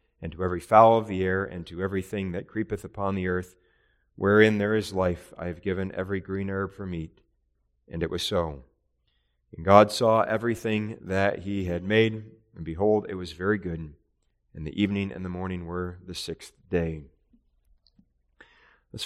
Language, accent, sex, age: English, American, male, 40-59